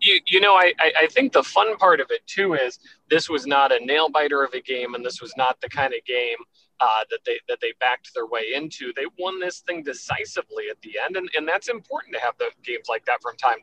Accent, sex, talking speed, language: American, male, 255 wpm, English